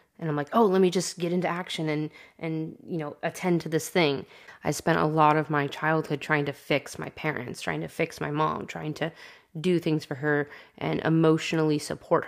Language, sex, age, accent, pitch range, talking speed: English, female, 20-39, American, 150-170 Hz, 215 wpm